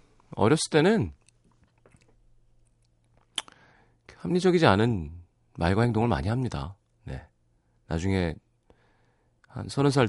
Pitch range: 90-130 Hz